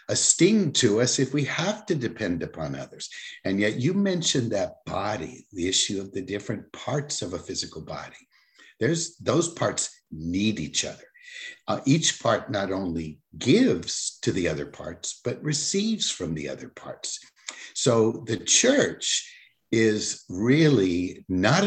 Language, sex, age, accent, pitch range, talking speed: English, male, 60-79, American, 90-145 Hz, 150 wpm